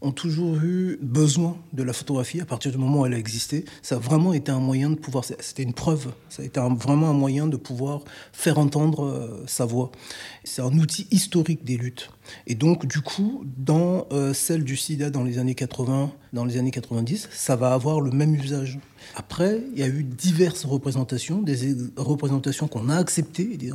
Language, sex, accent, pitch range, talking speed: French, male, French, 125-150 Hz, 205 wpm